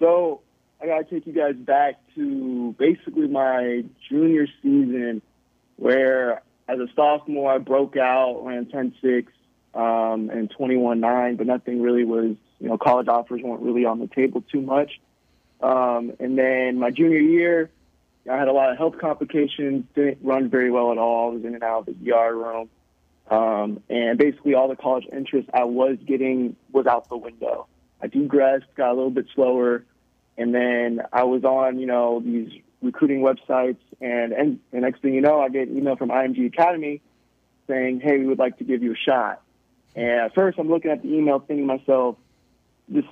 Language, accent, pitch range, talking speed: English, American, 120-140 Hz, 190 wpm